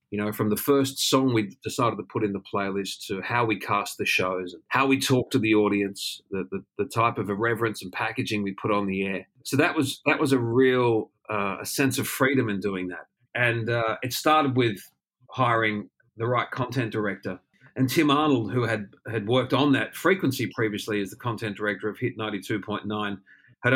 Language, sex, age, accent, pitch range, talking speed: English, male, 40-59, Australian, 105-130 Hz, 215 wpm